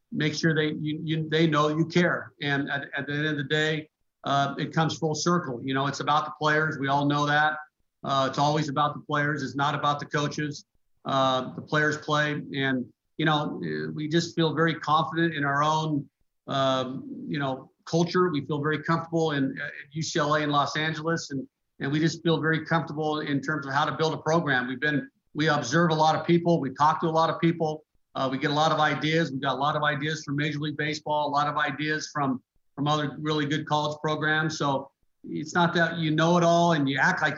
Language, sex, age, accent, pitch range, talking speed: English, male, 50-69, American, 140-155 Hz, 230 wpm